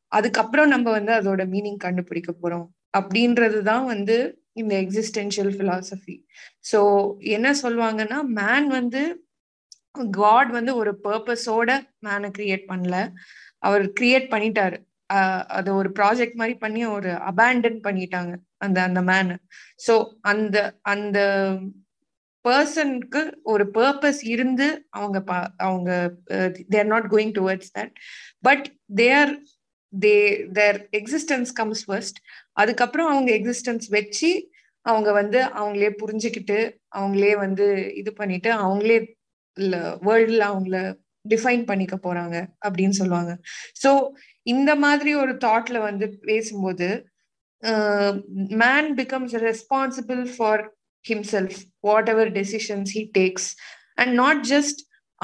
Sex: female